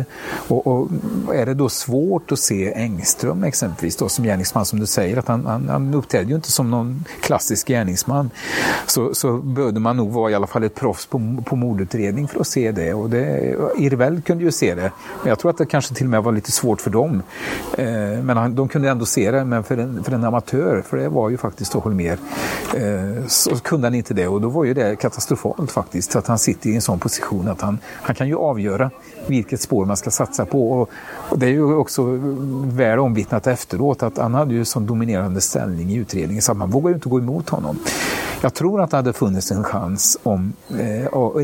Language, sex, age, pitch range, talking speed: Swedish, male, 40-59, 105-135 Hz, 225 wpm